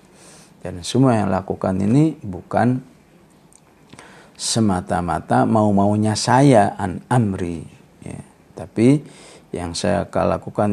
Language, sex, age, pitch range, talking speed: English, male, 50-69, 100-140 Hz, 95 wpm